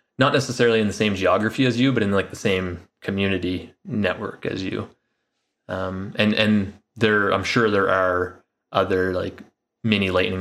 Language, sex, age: English, male, 20-39